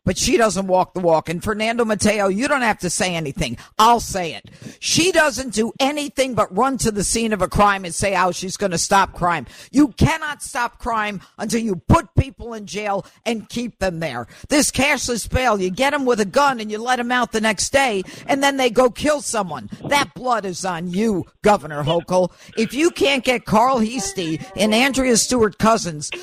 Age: 50-69